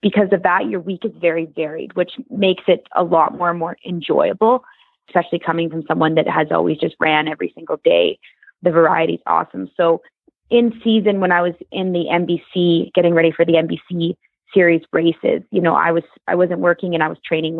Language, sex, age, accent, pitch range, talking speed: English, female, 20-39, American, 160-180 Hz, 205 wpm